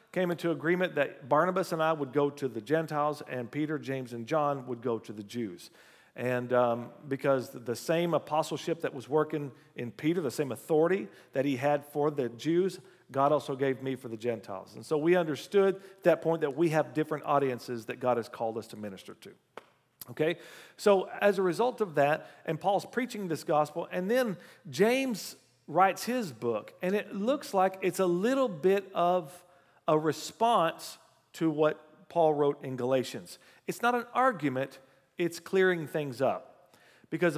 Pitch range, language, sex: 140-185 Hz, English, male